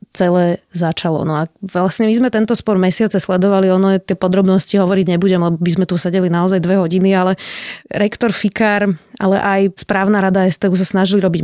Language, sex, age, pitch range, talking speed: Slovak, female, 20-39, 185-205 Hz, 190 wpm